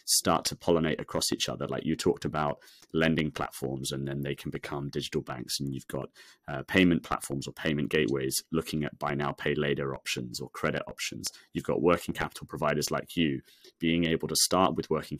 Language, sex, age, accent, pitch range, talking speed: English, male, 30-49, British, 70-85 Hz, 200 wpm